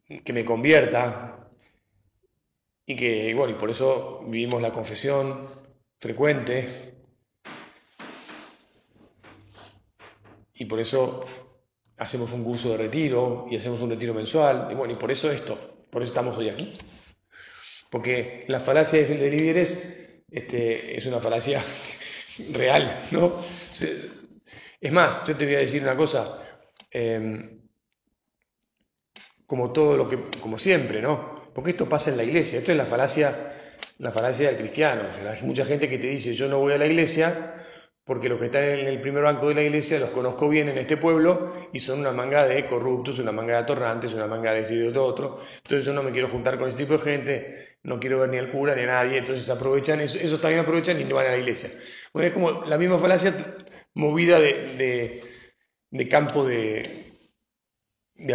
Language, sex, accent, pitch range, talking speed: Spanish, male, Argentinian, 120-150 Hz, 180 wpm